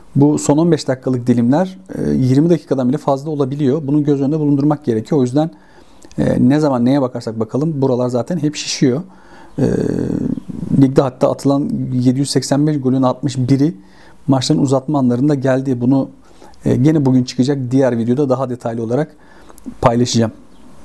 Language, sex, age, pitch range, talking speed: Turkish, male, 40-59, 130-180 Hz, 130 wpm